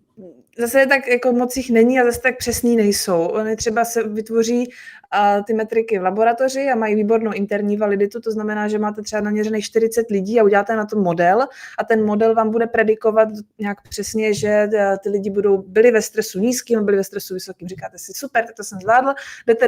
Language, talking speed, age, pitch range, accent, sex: Czech, 205 wpm, 20-39, 205-235 Hz, native, female